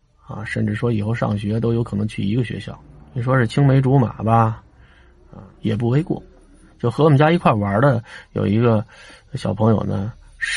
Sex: male